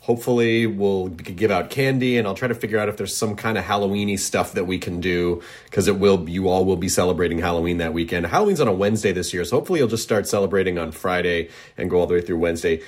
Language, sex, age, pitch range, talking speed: English, male, 30-49, 85-115 Hz, 250 wpm